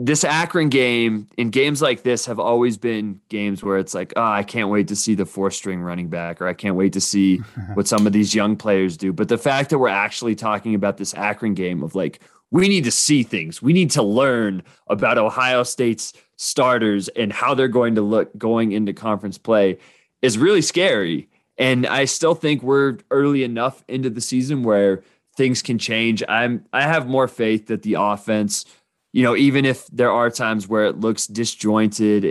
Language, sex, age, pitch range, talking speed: English, male, 20-39, 105-125 Hz, 205 wpm